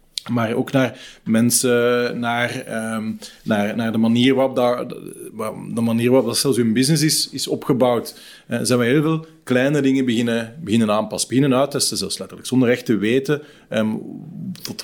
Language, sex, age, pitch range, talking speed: Dutch, male, 30-49, 105-130 Hz, 175 wpm